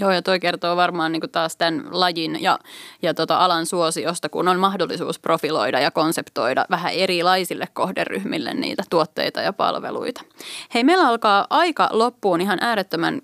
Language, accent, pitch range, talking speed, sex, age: Finnish, native, 170-210 Hz, 145 wpm, female, 20-39